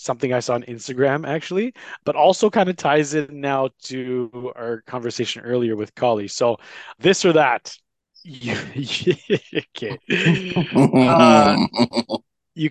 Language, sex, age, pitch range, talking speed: English, male, 20-39, 125-180 Hz, 120 wpm